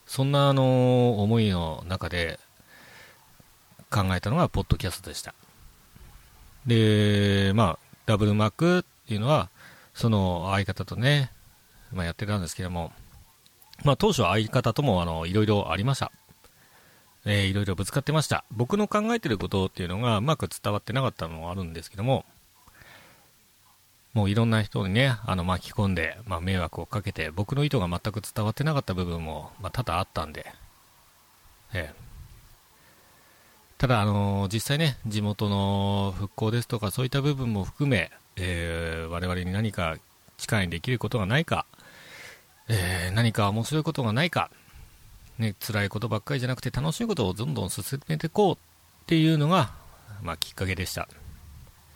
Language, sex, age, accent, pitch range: Japanese, male, 40-59, native, 90-125 Hz